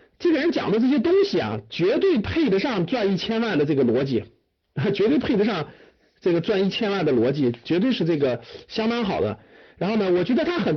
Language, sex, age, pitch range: Chinese, male, 50-69, 180-285 Hz